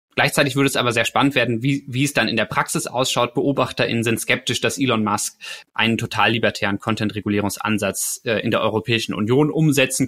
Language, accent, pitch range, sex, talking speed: German, German, 105-130 Hz, male, 180 wpm